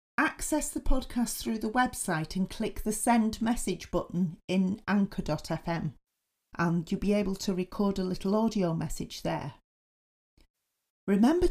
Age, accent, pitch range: 40-59, British, 165-220 Hz